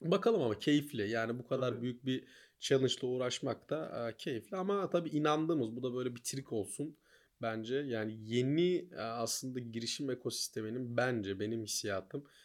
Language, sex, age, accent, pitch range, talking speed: Turkish, male, 30-49, native, 110-130 Hz, 145 wpm